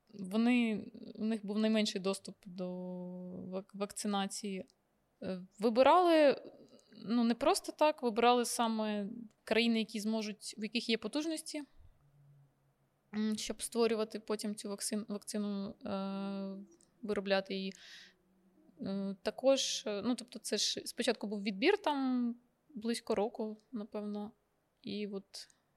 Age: 20-39